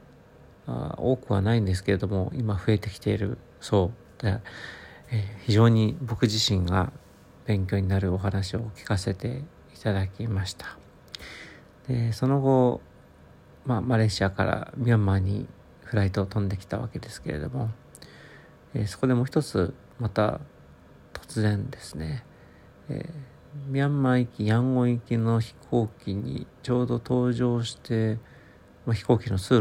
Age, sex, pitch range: 50-69, male, 100-125 Hz